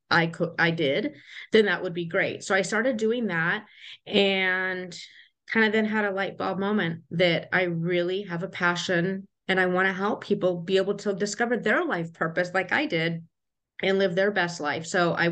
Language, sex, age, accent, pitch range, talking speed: English, female, 30-49, American, 170-205 Hz, 205 wpm